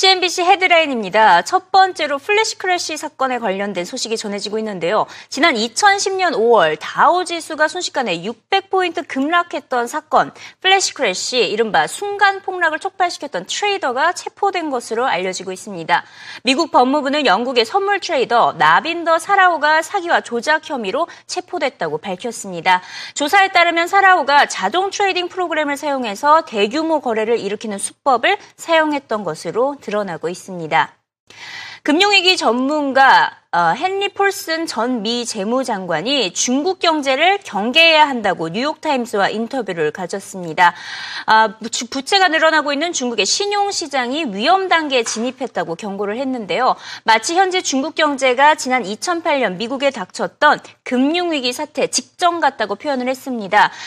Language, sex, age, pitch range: Korean, female, 30-49, 230-350 Hz